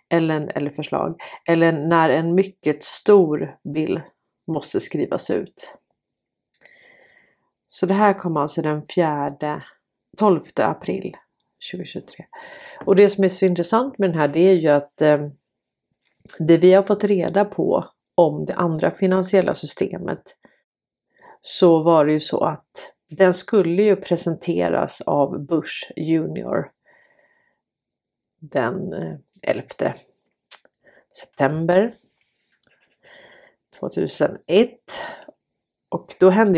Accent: native